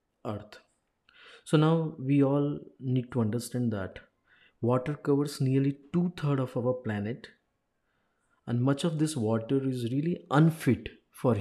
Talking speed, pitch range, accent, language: 130 wpm, 120-145 Hz, native, Hindi